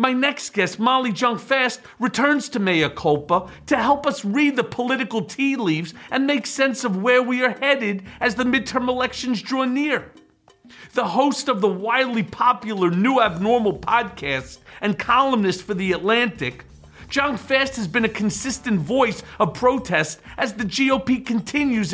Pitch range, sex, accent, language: 210-265 Hz, male, American, English